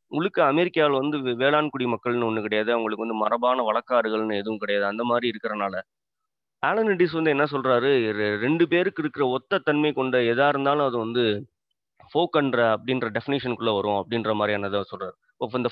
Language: Tamil